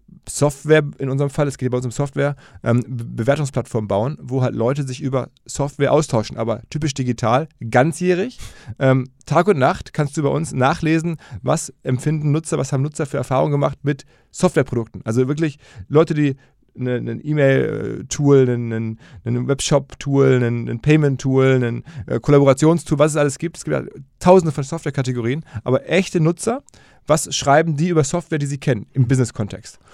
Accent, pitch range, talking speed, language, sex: German, 130-155 Hz, 170 wpm, German, male